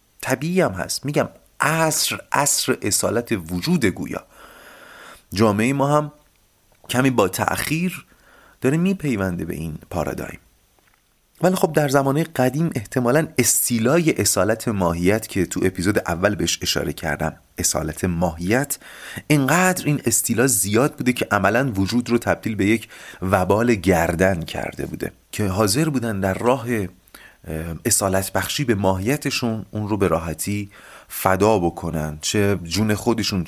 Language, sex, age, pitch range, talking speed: Persian, male, 30-49, 95-135 Hz, 125 wpm